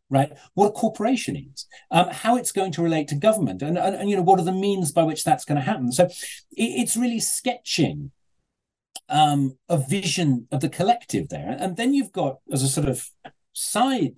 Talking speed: 205 wpm